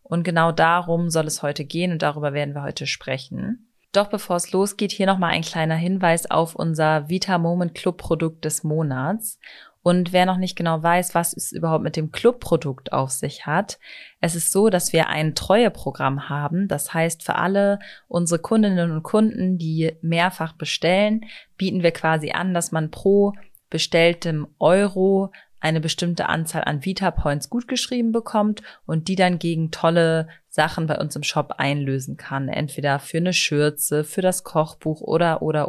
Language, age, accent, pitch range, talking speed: German, 30-49, German, 155-190 Hz, 170 wpm